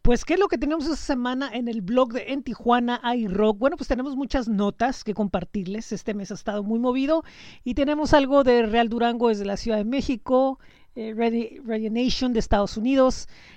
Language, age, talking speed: Spanish, 40-59, 205 wpm